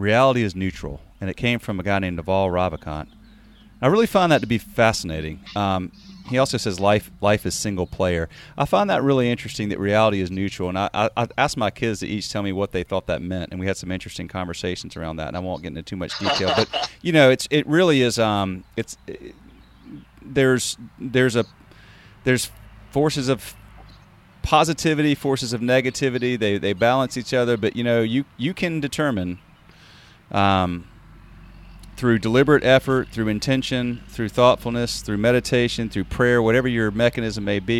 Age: 30-49